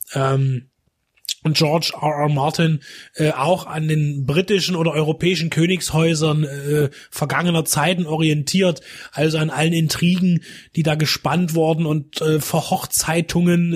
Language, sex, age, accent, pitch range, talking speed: German, male, 20-39, German, 145-175 Hz, 125 wpm